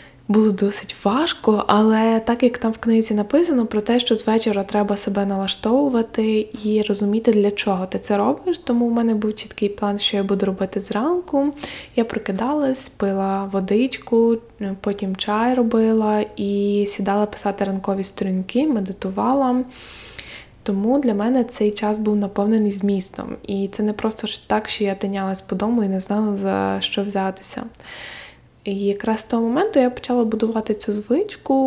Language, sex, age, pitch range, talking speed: Ukrainian, female, 20-39, 200-225 Hz, 155 wpm